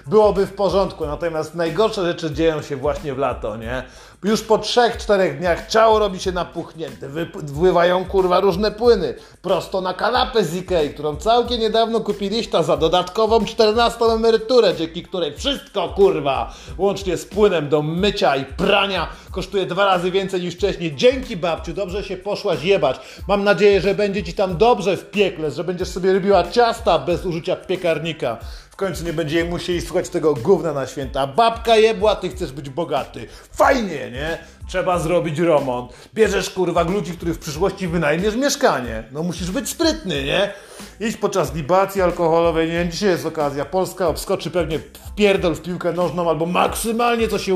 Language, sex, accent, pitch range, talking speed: Polish, male, native, 165-205 Hz, 165 wpm